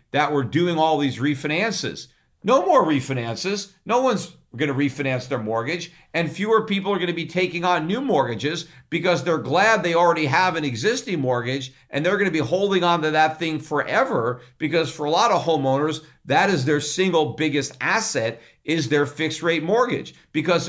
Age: 50-69